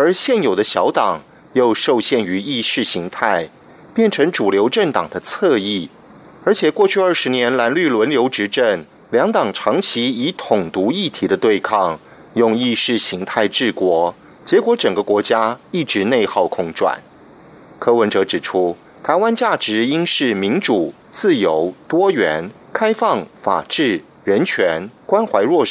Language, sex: German, male